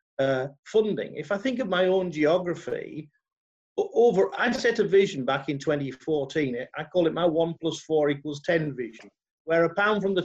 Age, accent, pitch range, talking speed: 50-69, British, 145-210 Hz, 185 wpm